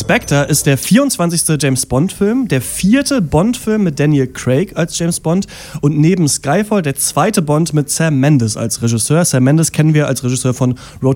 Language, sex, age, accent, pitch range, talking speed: German, male, 30-49, German, 130-165 Hz, 180 wpm